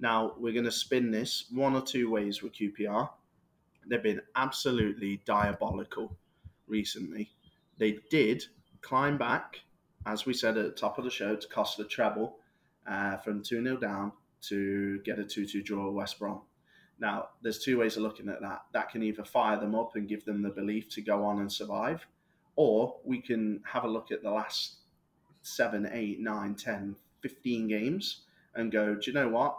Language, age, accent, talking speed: English, 20-39, British, 185 wpm